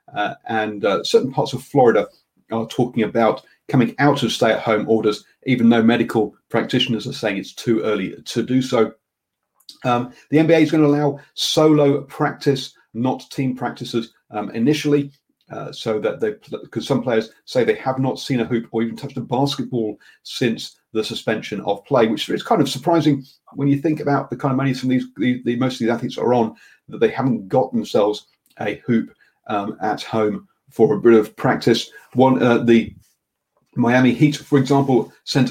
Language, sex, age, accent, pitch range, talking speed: English, male, 40-59, British, 115-140 Hz, 190 wpm